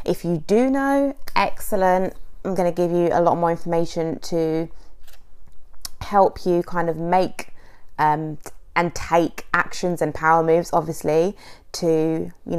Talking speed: 145 wpm